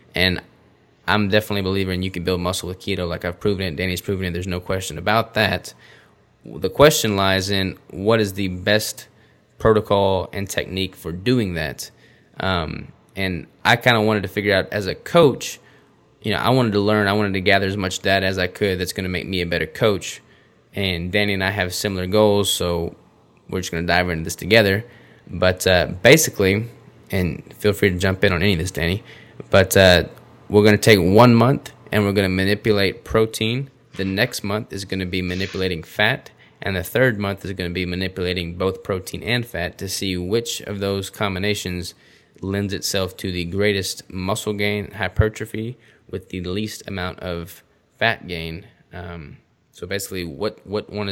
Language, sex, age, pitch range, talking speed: English, male, 20-39, 90-105 Hz, 195 wpm